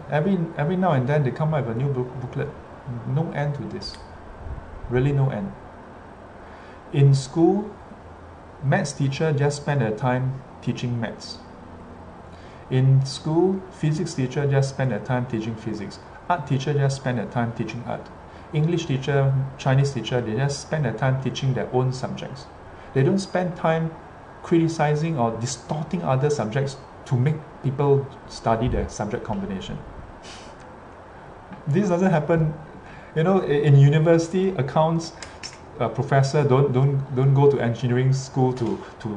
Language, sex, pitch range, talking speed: English, male, 125-155 Hz, 145 wpm